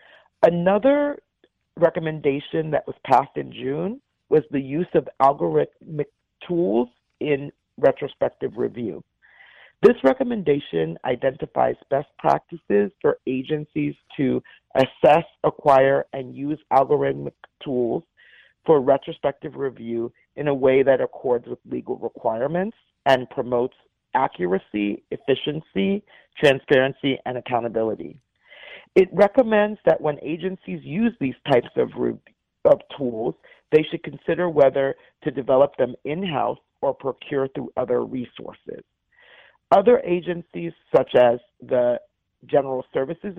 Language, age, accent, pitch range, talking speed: English, 40-59, American, 125-170 Hz, 110 wpm